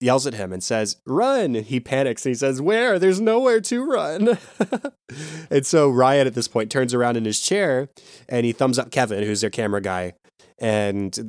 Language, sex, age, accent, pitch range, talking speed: English, male, 20-39, American, 105-130 Hz, 195 wpm